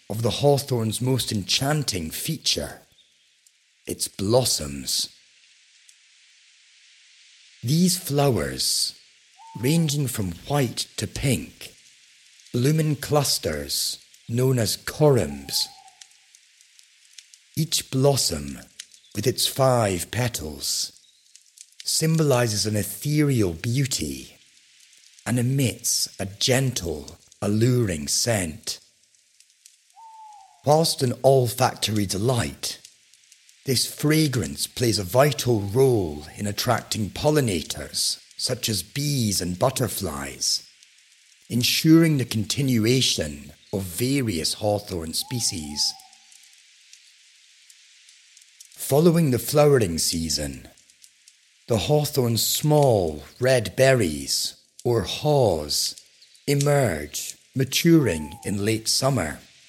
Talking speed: 80 wpm